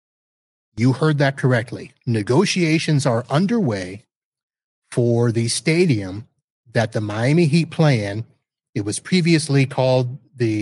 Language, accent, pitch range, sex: English, American, 120-155 Hz, male